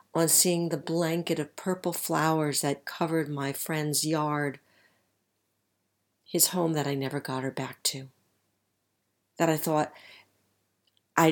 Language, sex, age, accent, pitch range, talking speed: English, female, 50-69, American, 110-180 Hz, 135 wpm